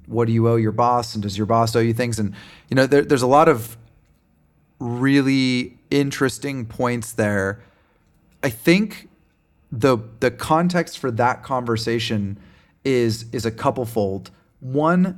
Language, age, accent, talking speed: English, 30-49, American, 155 wpm